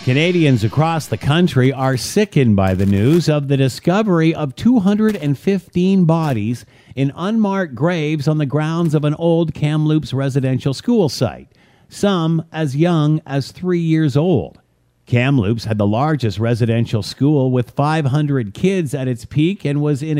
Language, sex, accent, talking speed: English, male, American, 150 wpm